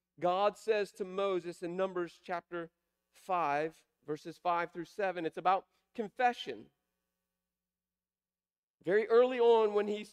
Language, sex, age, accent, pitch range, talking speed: English, male, 40-59, American, 145-220 Hz, 120 wpm